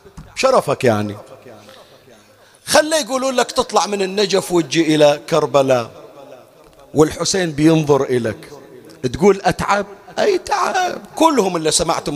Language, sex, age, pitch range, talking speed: Arabic, male, 40-59, 130-200 Hz, 105 wpm